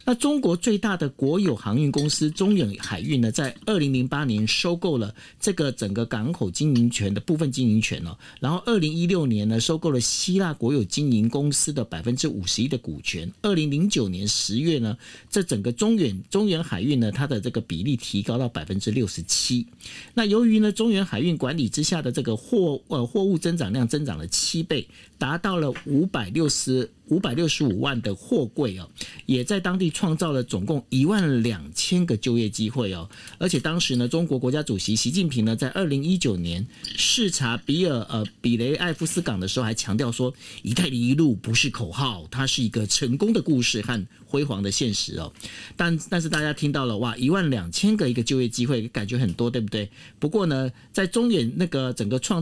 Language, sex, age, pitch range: Chinese, male, 50-69, 115-170 Hz